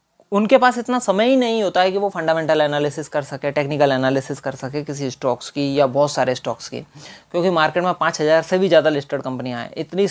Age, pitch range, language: 20-39, 145-175 Hz, English